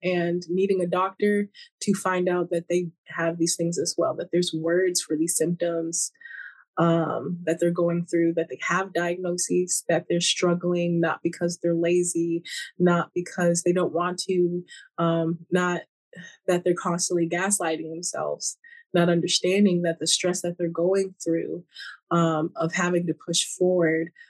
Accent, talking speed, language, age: American, 160 wpm, English, 20-39